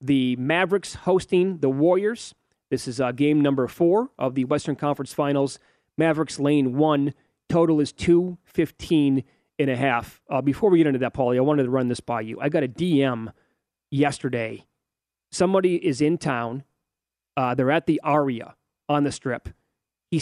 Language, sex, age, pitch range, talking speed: English, male, 30-49, 130-160 Hz, 170 wpm